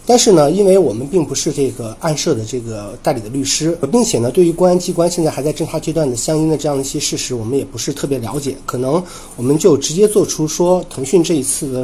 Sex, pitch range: male, 130-185 Hz